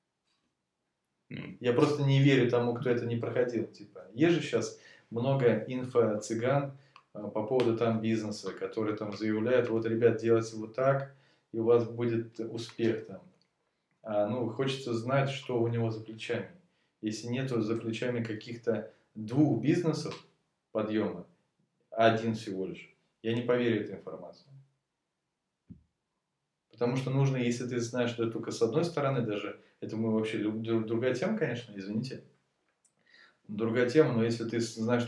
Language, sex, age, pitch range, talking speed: Russian, male, 20-39, 110-130 Hz, 140 wpm